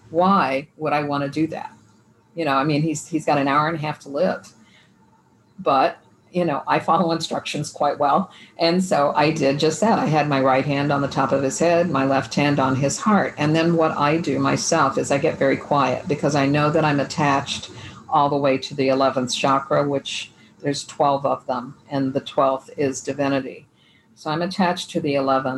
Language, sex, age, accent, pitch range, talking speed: English, female, 50-69, American, 135-160 Hz, 215 wpm